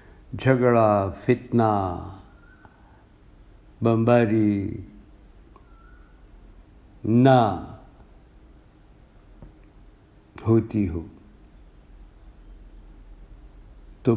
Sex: male